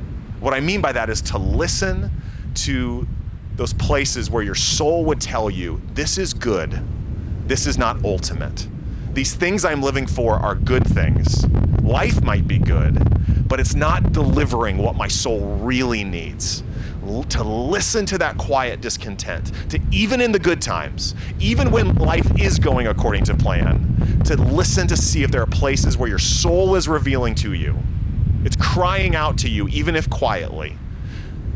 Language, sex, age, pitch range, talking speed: English, male, 30-49, 90-115 Hz, 165 wpm